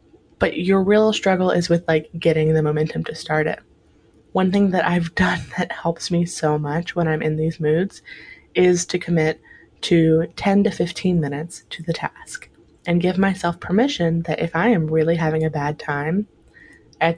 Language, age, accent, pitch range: English, 20-39, American, 165-200 Hz